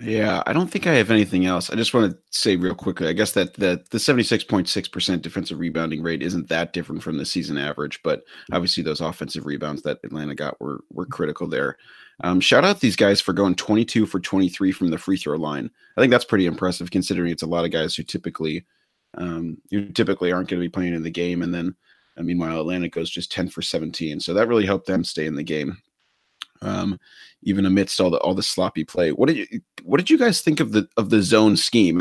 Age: 30-49